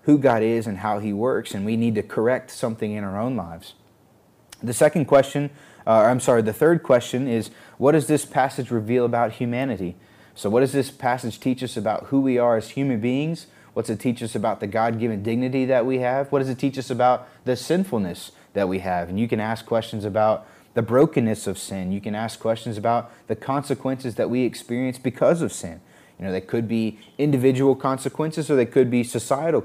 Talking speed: 215 wpm